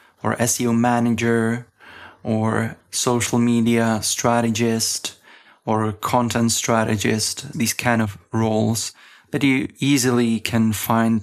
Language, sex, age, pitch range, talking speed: Czech, male, 20-39, 110-125 Hz, 100 wpm